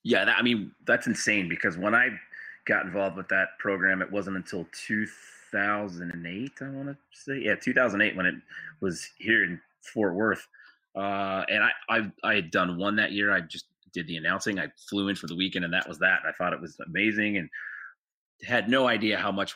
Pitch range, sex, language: 90-110 Hz, male, English